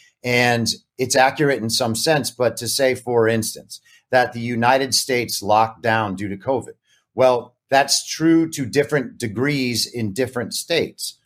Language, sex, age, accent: English, male, 40-59, American